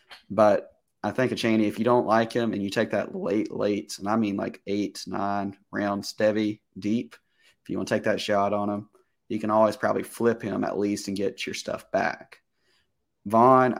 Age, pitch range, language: 20-39, 100-115 Hz, English